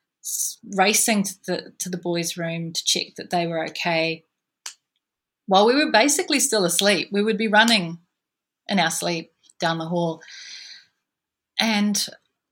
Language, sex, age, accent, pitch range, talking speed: English, female, 30-49, Australian, 175-220 Hz, 140 wpm